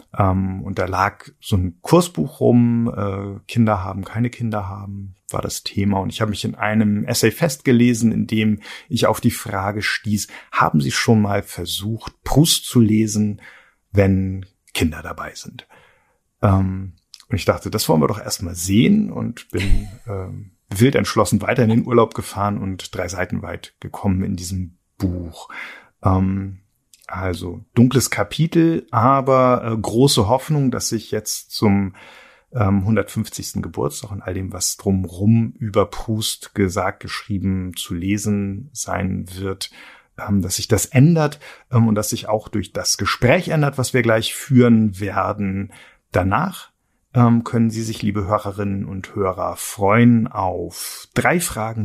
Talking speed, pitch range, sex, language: 145 wpm, 95-120 Hz, male, German